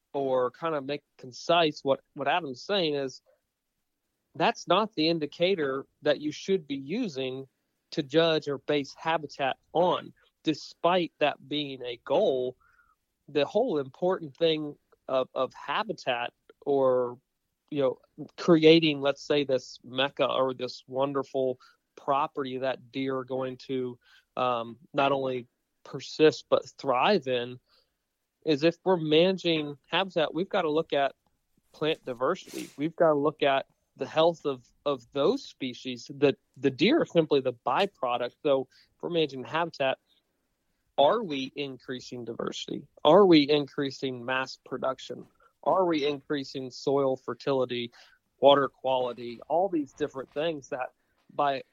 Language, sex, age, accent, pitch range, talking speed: English, male, 40-59, American, 130-160 Hz, 135 wpm